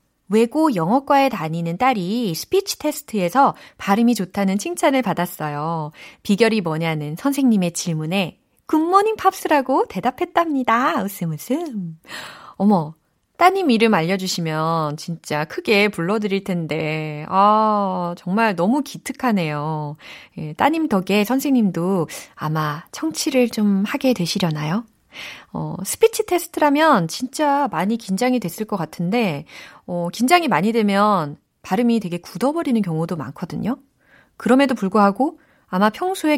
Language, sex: Korean, female